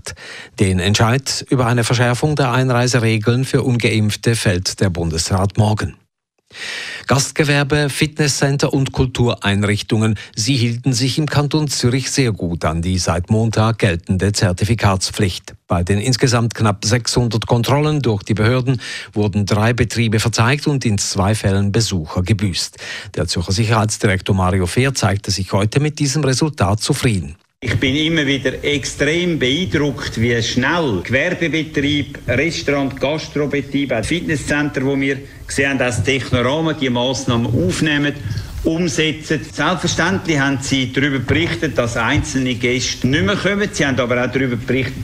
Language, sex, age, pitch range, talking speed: German, male, 50-69, 105-140 Hz, 135 wpm